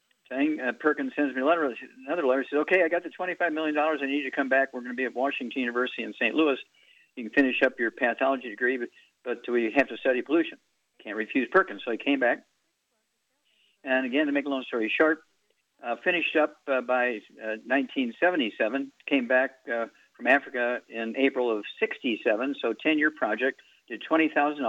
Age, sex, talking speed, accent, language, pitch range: 50-69, male, 200 wpm, American, English, 130-170 Hz